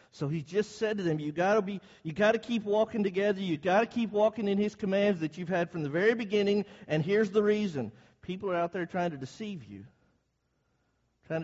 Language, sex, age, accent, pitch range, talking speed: English, male, 50-69, American, 145-215 Hz, 215 wpm